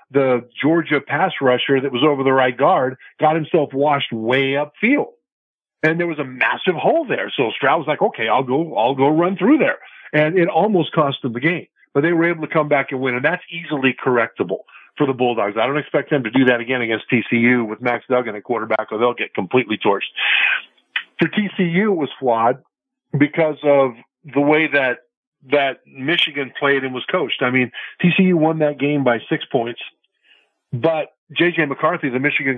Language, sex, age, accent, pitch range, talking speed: English, male, 50-69, American, 130-165 Hz, 200 wpm